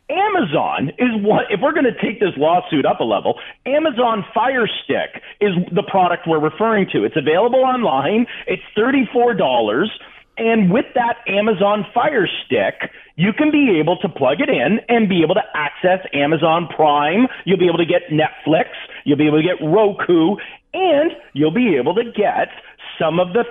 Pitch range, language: 175-255 Hz, English